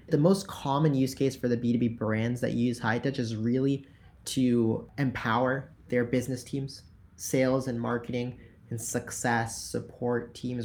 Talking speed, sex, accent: 150 wpm, male, American